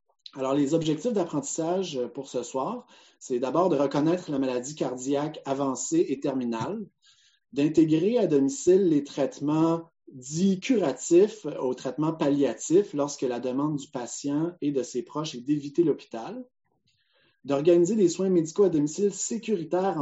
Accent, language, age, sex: Canadian, French, 30-49, male